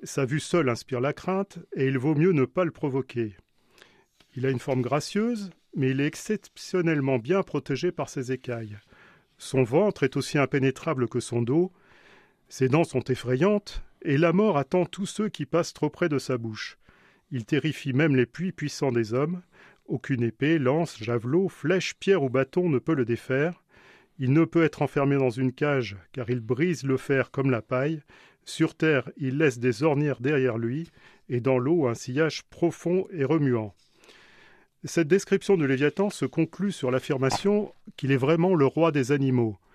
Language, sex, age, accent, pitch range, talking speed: French, male, 40-59, French, 130-175 Hz, 185 wpm